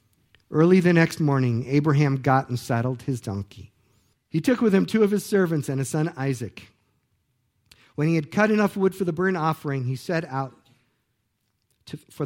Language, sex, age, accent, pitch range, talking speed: English, male, 50-69, American, 110-145 Hz, 175 wpm